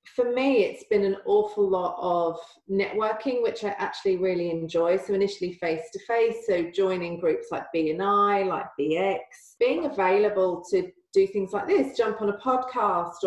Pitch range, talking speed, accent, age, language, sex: 180-225 Hz, 165 wpm, British, 40-59, English, female